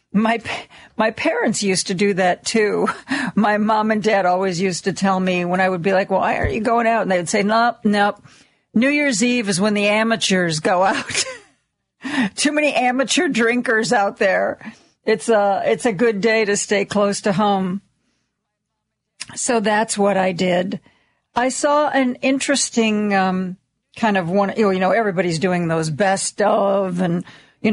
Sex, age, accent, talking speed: female, 50-69, American, 175 wpm